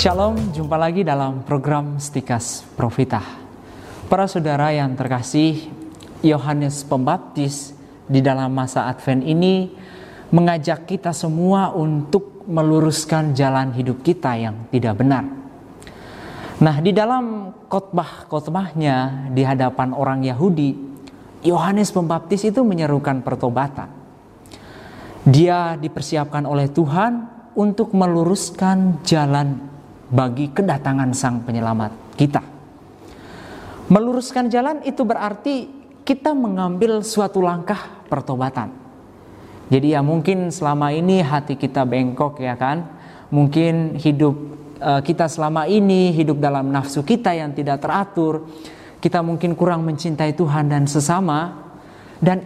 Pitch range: 135-180 Hz